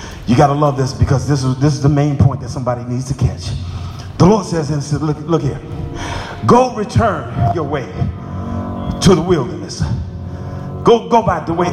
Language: English